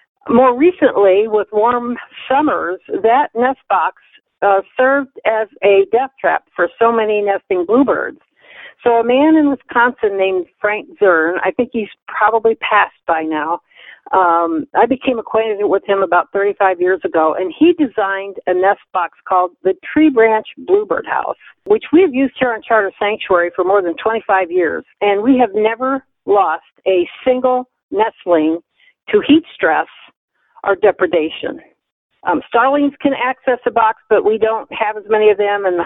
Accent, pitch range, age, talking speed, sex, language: American, 195-280 Hz, 50-69, 160 wpm, female, English